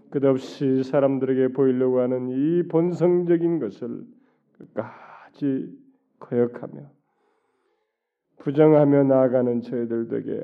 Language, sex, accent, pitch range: Korean, male, native, 130-150 Hz